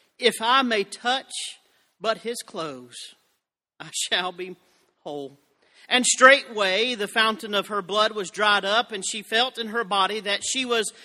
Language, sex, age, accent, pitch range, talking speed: English, male, 40-59, American, 200-250 Hz, 165 wpm